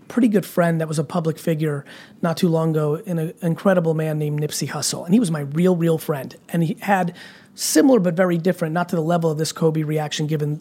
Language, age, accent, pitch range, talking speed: English, 30-49, American, 165-200 Hz, 240 wpm